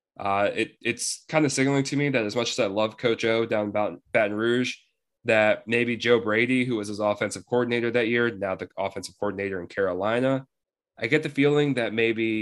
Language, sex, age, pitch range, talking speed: English, male, 10-29, 110-135 Hz, 210 wpm